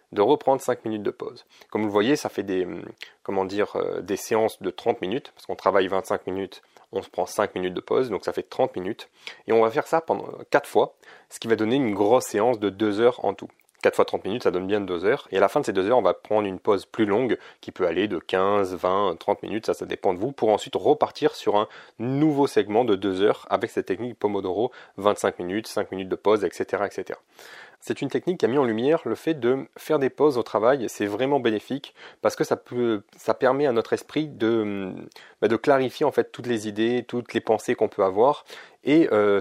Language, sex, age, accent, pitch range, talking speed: French, male, 30-49, French, 105-135 Hz, 245 wpm